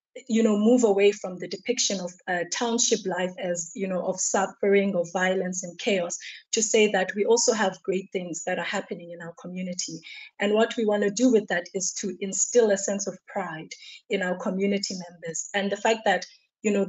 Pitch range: 180-215 Hz